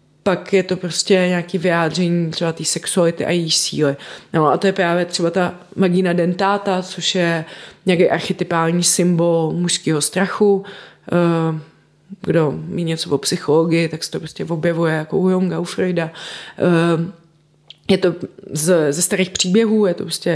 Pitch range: 170-190 Hz